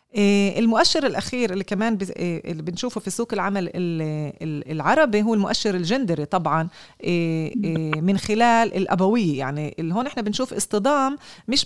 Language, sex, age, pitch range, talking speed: Hebrew, female, 30-49, 185-235 Hz, 125 wpm